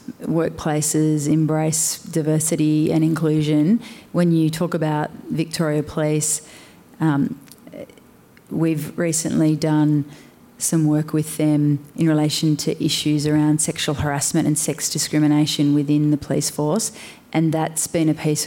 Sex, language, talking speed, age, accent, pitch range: female, English, 125 wpm, 30-49, Australian, 150-160 Hz